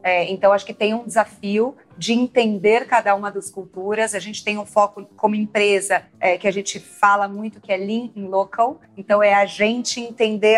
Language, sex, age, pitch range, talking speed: Portuguese, female, 30-49, 200-235 Hz, 200 wpm